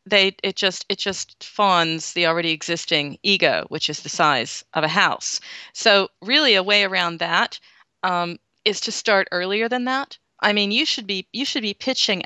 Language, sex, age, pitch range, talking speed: English, female, 40-59, 170-210 Hz, 190 wpm